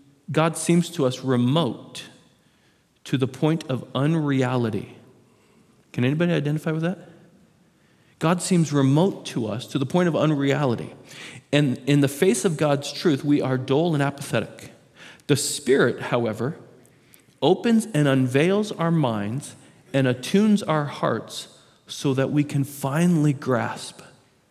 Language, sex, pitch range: English, male, 125-160 Hz